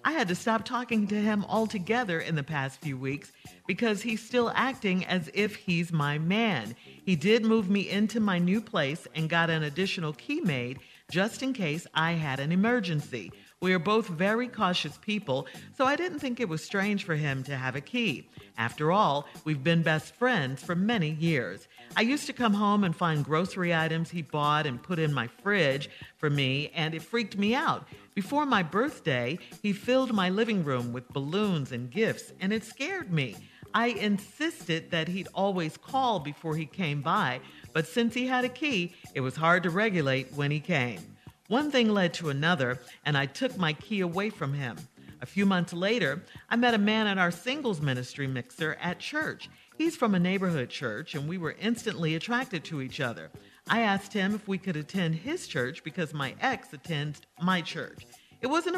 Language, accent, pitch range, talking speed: English, American, 150-210 Hz, 195 wpm